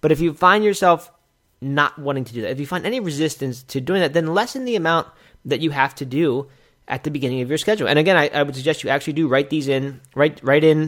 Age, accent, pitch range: 20-39, American, 130-170 Hz